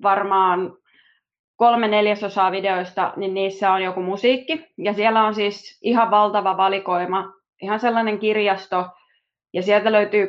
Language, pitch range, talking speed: Finnish, 190-225 Hz, 130 wpm